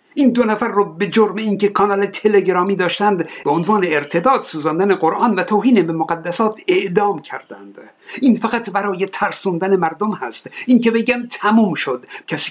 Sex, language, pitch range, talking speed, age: male, Persian, 175-220 Hz, 155 wpm, 60-79